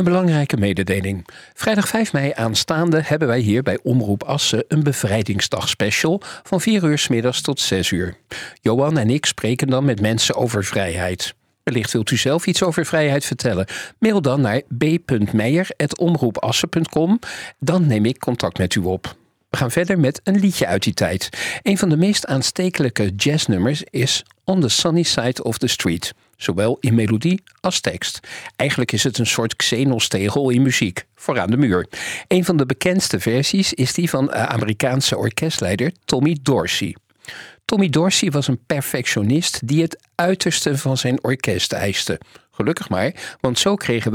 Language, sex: Dutch, male